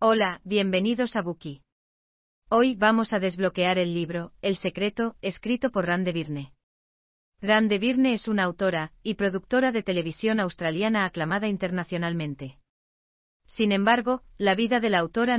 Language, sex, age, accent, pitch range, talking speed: Spanish, female, 40-59, Spanish, 165-210 Hz, 140 wpm